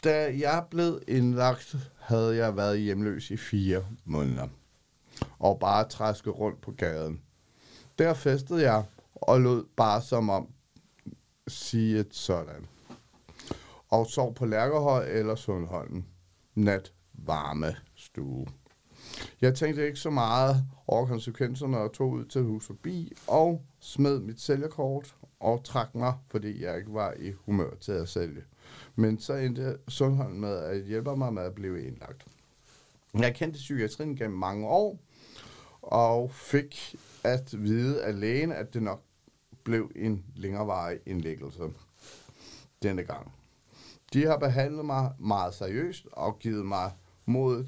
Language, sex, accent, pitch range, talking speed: Danish, male, native, 105-135 Hz, 140 wpm